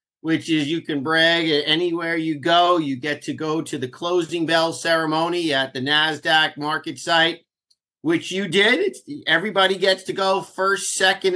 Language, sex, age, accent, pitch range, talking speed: English, male, 50-69, American, 140-175 Hz, 175 wpm